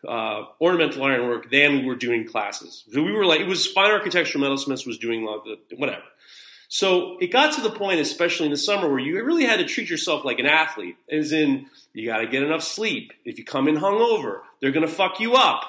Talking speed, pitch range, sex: 245 wpm, 140-215 Hz, male